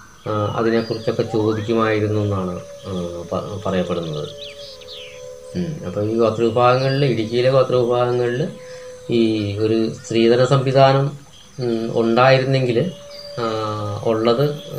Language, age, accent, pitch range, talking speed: Malayalam, 20-39, native, 115-145 Hz, 65 wpm